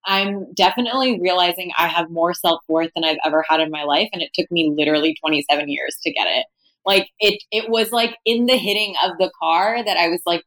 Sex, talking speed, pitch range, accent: female, 225 wpm, 170-215 Hz, American